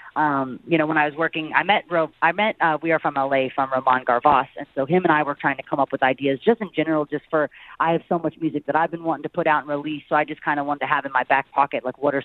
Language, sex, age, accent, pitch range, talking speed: English, female, 30-49, American, 130-155 Hz, 320 wpm